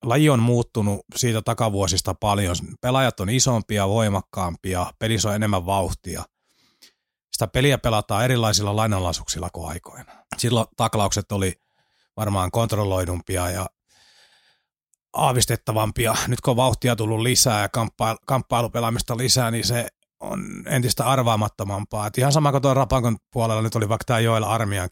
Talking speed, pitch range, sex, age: 130 wpm, 100-120 Hz, male, 30-49